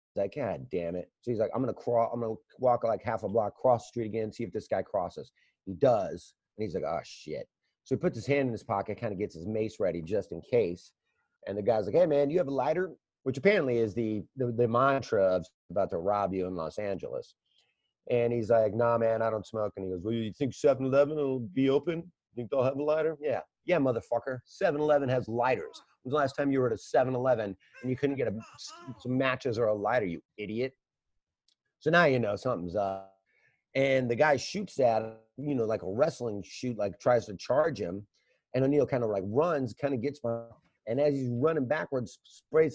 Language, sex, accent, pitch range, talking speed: English, male, American, 110-140 Hz, 230 wpm